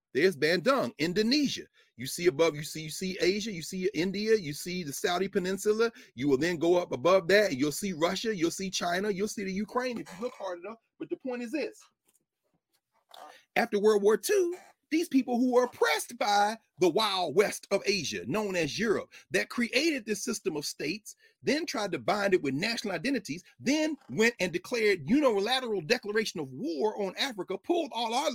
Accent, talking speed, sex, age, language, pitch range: American, 195 wpm, male, 40-59, English, 170-245 Hz